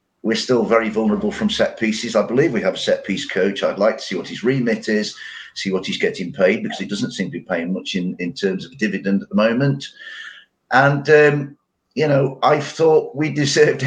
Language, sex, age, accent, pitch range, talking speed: English, male, 50-69, British, 105-150 Hz, 225 wpm